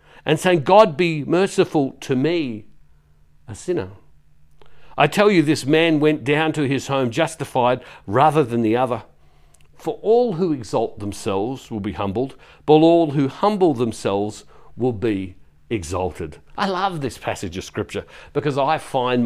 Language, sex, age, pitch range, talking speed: English, male, 50-69, 110-150 Hz, 155 wpm